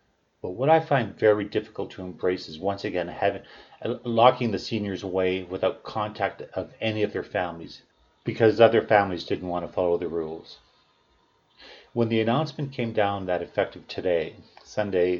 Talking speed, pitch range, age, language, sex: 160 wpm, 90-115 Hz, 40-59, English, male